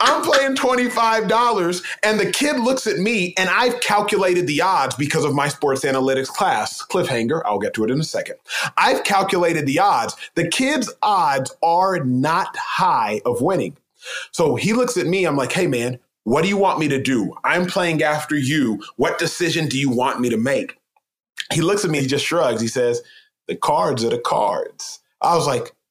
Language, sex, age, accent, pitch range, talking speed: English, male, 30-49, American, 140-215 Hz, 195 wpm